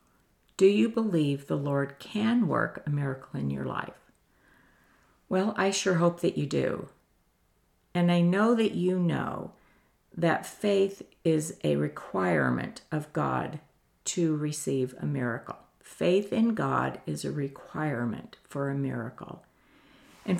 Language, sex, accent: English, female, American